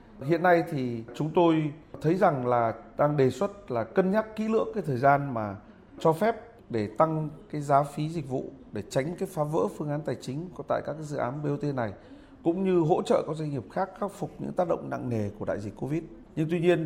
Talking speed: 235 wpm